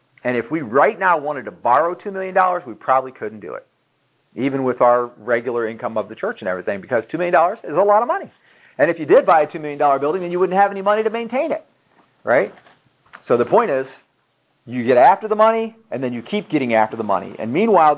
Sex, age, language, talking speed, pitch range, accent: male, 40-59, English, 235 wpm, 140-215 Hz, American